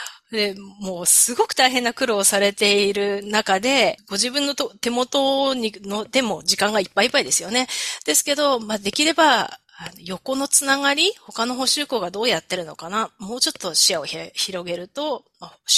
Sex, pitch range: female, 185-255 Hz